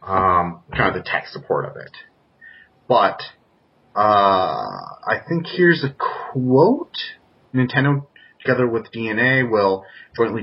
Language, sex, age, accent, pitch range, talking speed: English, male, 30-49, American, 105-130 Hz, 120 wpm